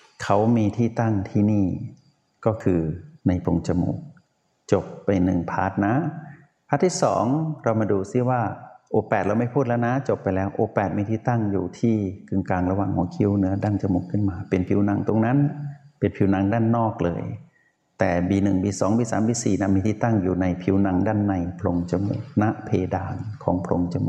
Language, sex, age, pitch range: Thai, male, 60-79, 95-120 Hz